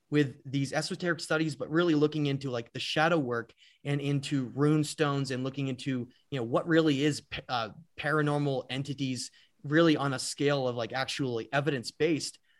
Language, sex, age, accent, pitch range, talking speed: English, male, 30-49, American, 135-165 Hz, 175 wpm